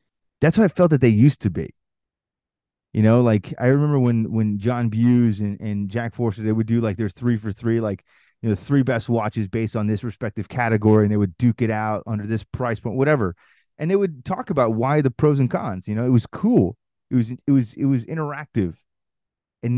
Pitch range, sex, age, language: 110-145 Hz, male, 30-49, English